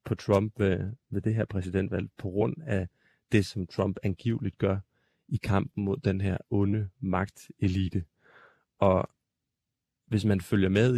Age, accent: 30-49, native